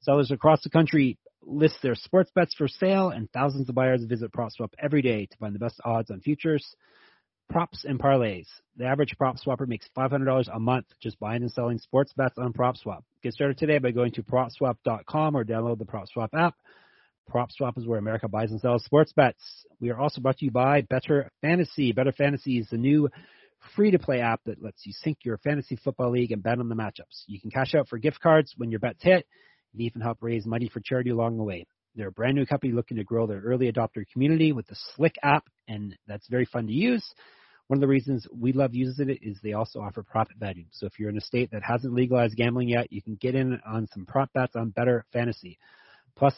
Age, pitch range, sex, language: 30-49, 115-140 Hz, male, English